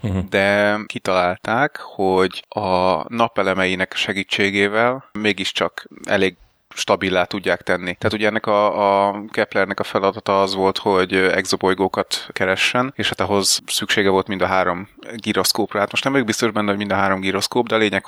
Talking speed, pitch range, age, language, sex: 150 wpm, 95-105 Hz, 30-49, Hungarian, male